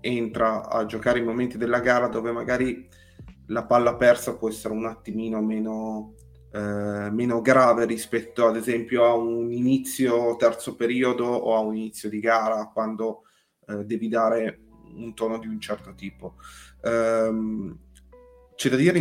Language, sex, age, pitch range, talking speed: Italian, male, 30-49, 110-125 Hz, 145 wpm